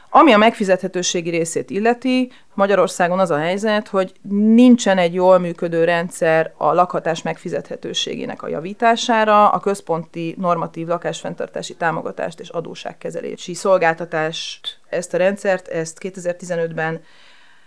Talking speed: 110 wpm